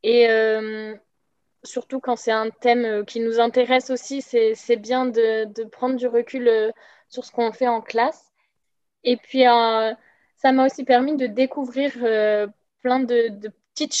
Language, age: French, 20-39